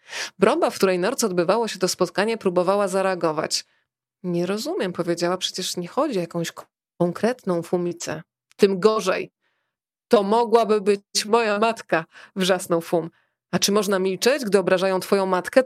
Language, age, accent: Polish, 30-49, native